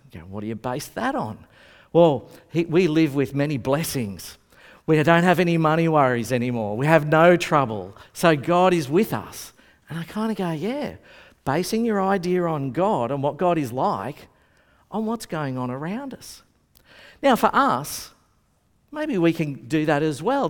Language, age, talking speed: English, 50-69, 185 wpm